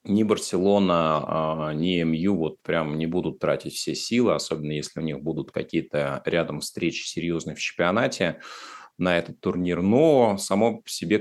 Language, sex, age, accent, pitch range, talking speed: Russian, male, 30-49, native, 80-95 Hz, 155 wpm